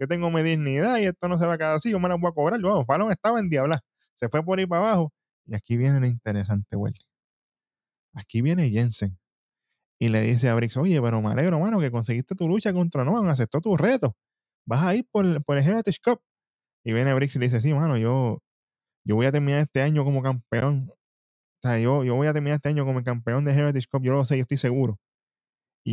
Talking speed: 240 wpm